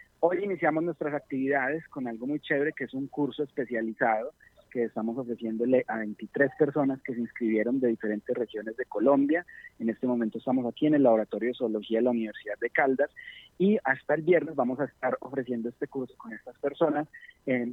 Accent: Colombian